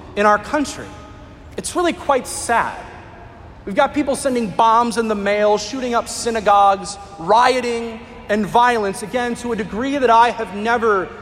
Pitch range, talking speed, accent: 220-290 Hz, 155 wpm, American